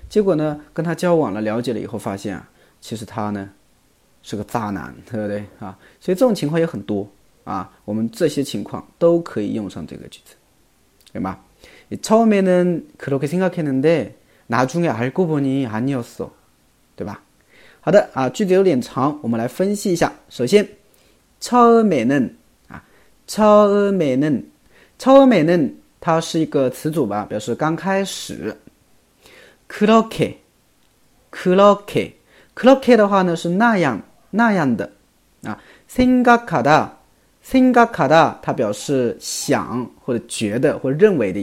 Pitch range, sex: 125-205 Hz, male